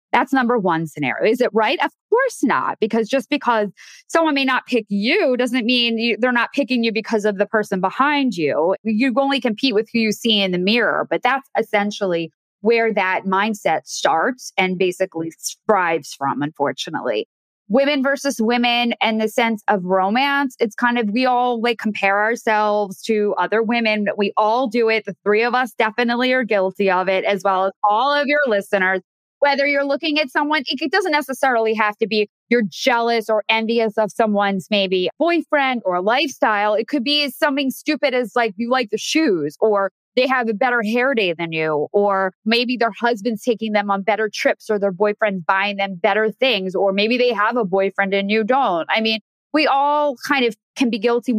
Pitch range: 200-255 Hz